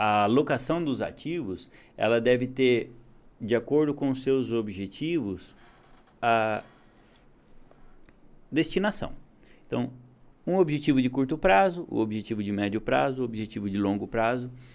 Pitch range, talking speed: 110-135 Hz, 130 wpm